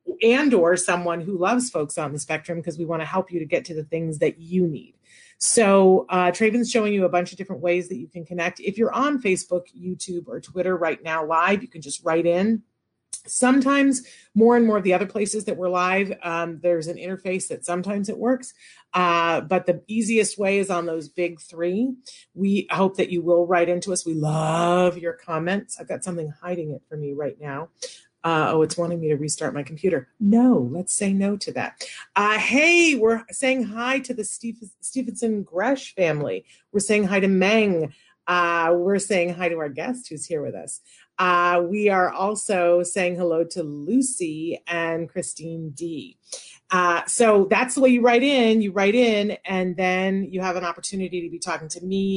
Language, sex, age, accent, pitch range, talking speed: English, female, 30-49, American, 170-215 Hz, 200 wpm